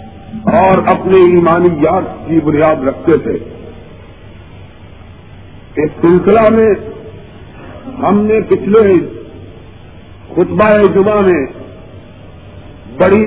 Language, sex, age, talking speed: Urdu, male, 50-69, 75 wpm